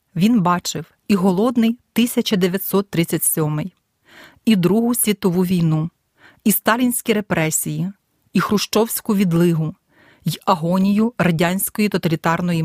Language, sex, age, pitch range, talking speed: Ukrainian, female, 30-49, 165-220 Hz, 90 wpm